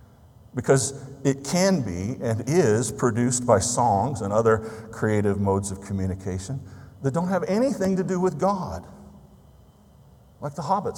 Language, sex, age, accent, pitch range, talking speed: English, male, 50-69, American, 110-140 Hz, 140 wpm